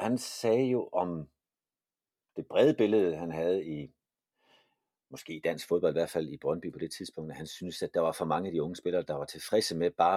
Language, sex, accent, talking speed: Danish, male, native, 230 wpm